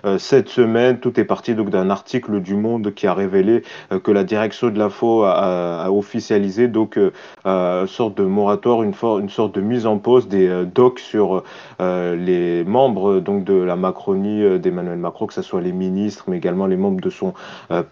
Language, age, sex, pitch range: French, 30-49, male, 95-115 Hz